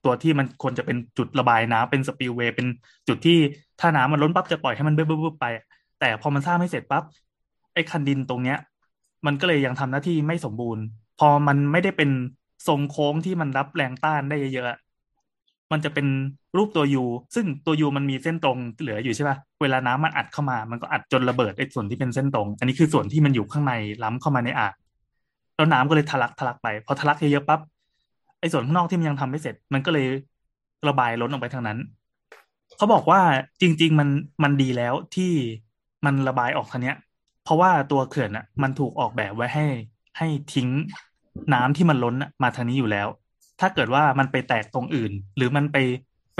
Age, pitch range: 20-39, 125-150 Hz